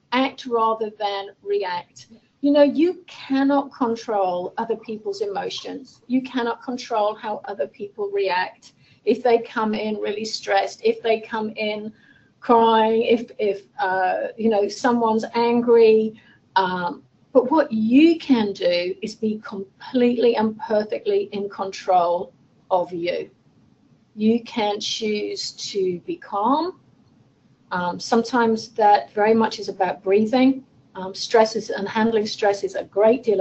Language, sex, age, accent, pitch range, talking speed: English, female, 40-59, British, 205-245 Hz, 135 wpm